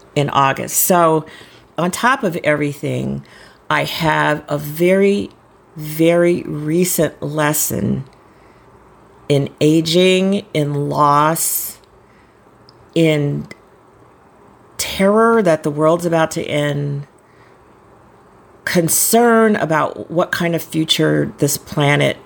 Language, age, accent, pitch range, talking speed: English, 50-69, American, 145-195 Hz, 90 wpm